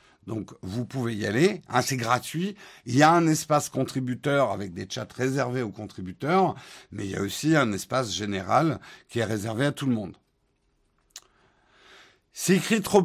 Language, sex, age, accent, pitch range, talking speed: French, male, 50-69, French, 115-160 Hz, 175 wpm